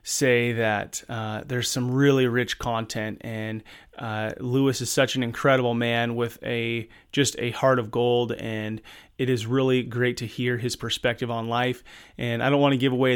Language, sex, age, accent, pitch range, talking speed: English, male, 30-49, American, 120-140 Hz, 185 wpm